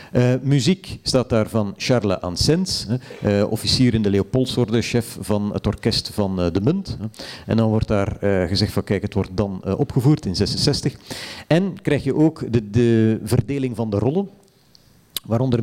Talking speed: 180 wpm